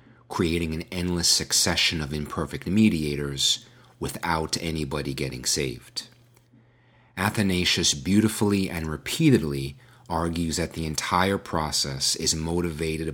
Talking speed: 100 wpm